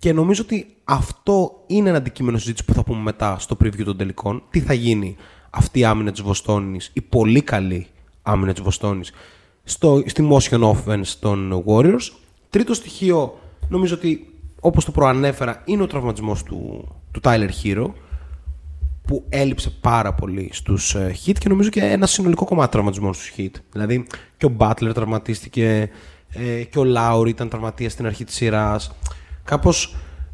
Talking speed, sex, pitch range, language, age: 155 wpm, male, 90-140 Hz, Greek, 20-39